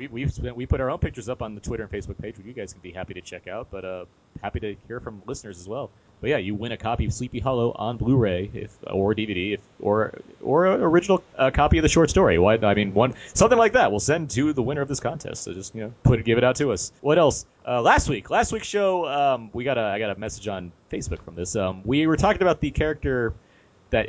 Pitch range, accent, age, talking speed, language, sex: 100-145 Hz, American, 30-49, 280 wpm, English, male